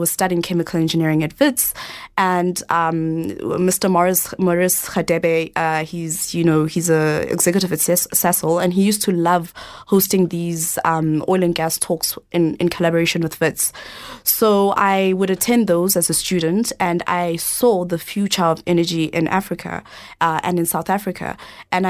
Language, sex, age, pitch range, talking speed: English, female, 20-39, 170-190 Hz, 170 wpm